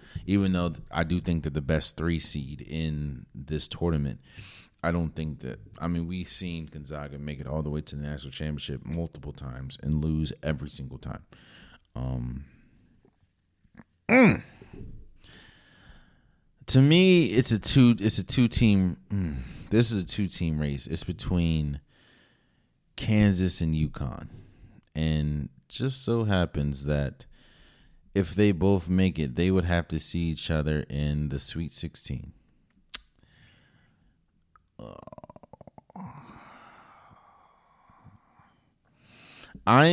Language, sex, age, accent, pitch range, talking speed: English, male, 30-49, American, 75-100 Hz, 120 wpm